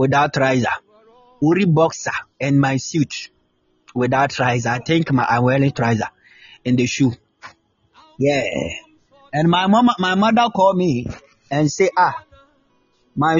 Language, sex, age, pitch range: Japanese, male, 30-49, 125-185 Hz